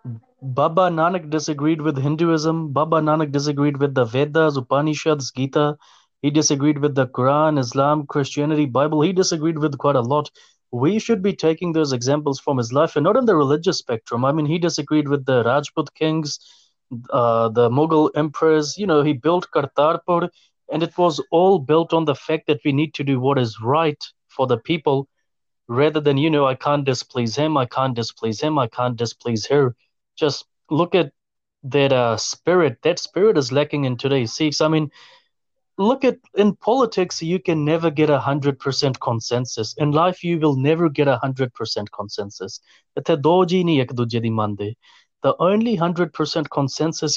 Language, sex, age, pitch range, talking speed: English, male, 30-49, 135-160 Hz, 165 wpm